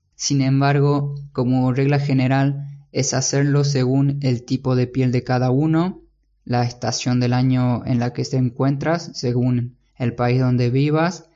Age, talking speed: 20-39, 155 wpm